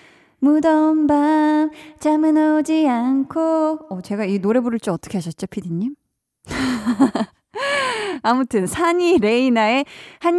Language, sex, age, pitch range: Korean, female, 20-39, 210-295 Hz